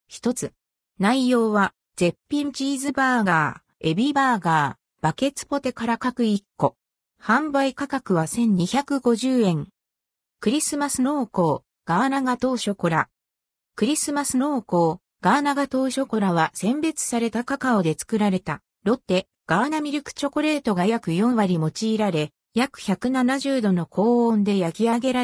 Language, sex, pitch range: Japanese, female, 185-270 Hz